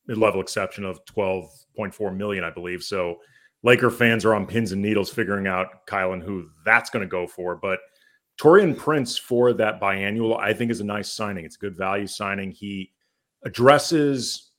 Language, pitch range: English, 95-110 Hz